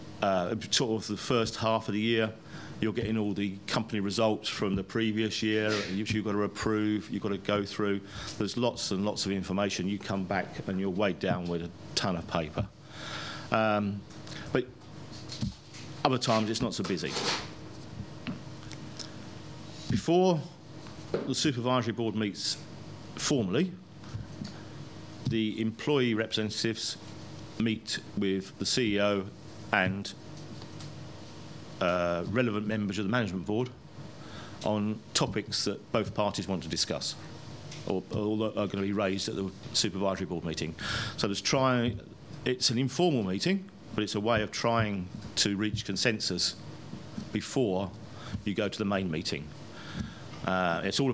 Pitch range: 100-125 Hz